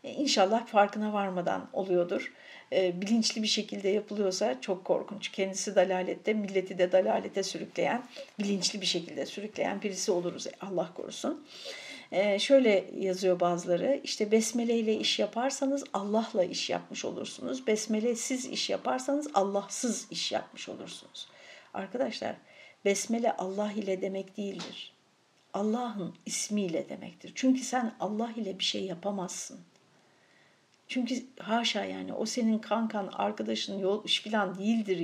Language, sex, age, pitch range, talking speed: Turkish, female, 60-79, 195-245 Hz, 120 wpm